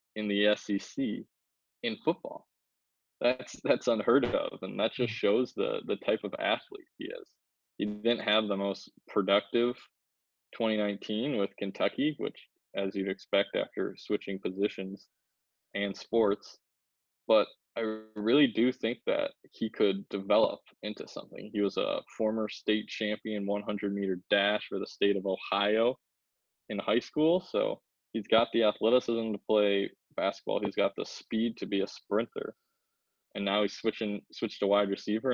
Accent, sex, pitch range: American, male, 100-115 Hz